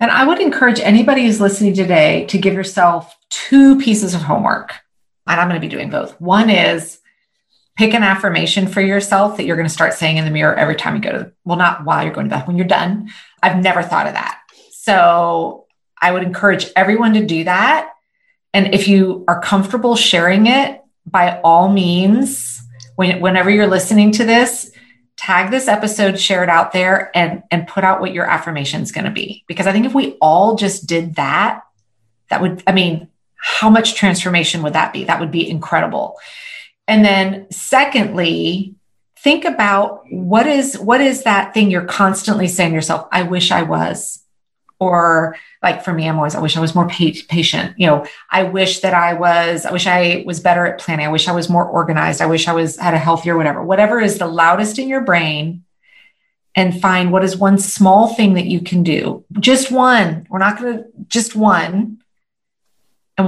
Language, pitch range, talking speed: English, 170-210 Hz, 200 wpm